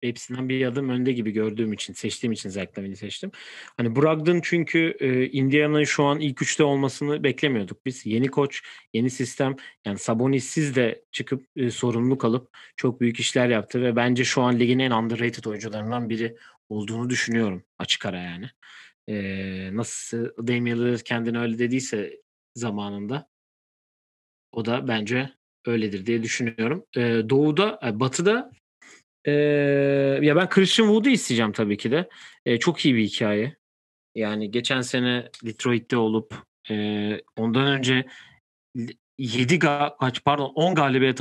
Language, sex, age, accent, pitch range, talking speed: Turkish, male, 40-59, native, 115-140 Hz, 145 wpm